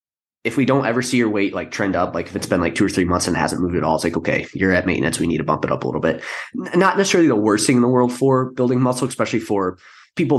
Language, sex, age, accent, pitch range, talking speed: English, male, 20-39, American, 90-130 Hz, 320 wpm